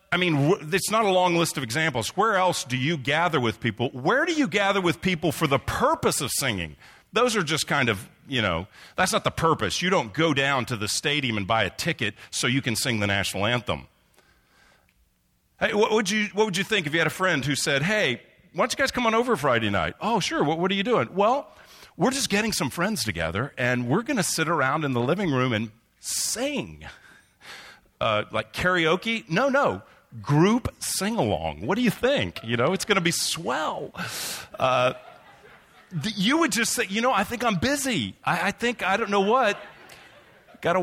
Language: English